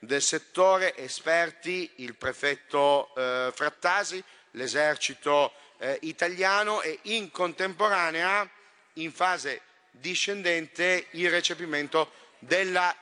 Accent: native